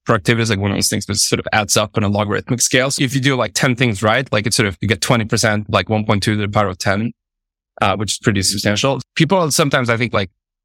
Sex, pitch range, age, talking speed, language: male, 105-130 Hz, 20-39, 275 wpm, English